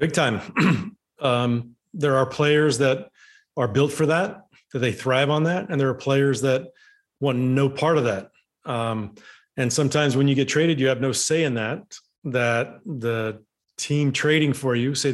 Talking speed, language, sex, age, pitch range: 180 wpm, English, male, 40-59, 130-155 Hz